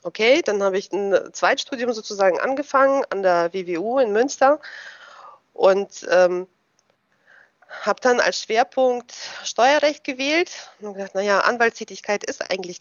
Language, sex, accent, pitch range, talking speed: German, female, German, 185-250 Hz, 125 wpm